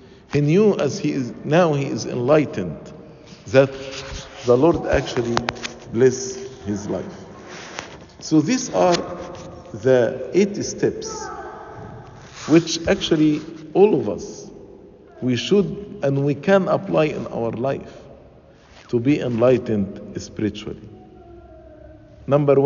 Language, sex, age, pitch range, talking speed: English, male, 50-69, 145-185 Hz, 110 wpm